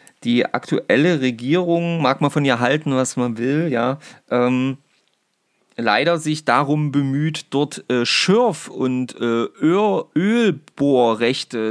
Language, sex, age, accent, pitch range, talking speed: German, male, 30-49, German, 120-150 Hz, 120 wpm